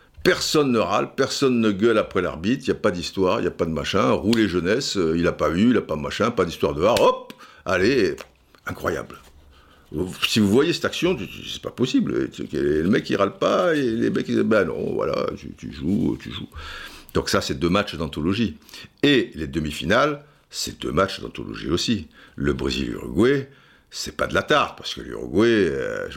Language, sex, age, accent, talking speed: French, male, 60-79, French, 200 wpm